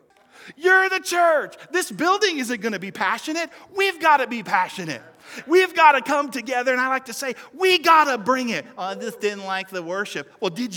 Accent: American